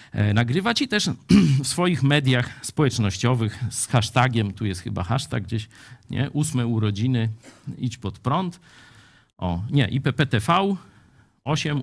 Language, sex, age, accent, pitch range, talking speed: Polish, male, 50-69, native, 110-145 Hz, 120 wpm